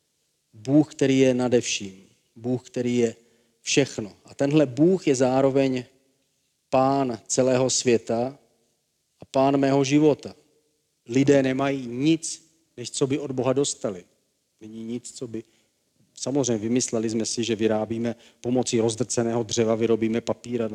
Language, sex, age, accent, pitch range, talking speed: Czech, male, 40-59, native, 115-140 Hz, 135 wpm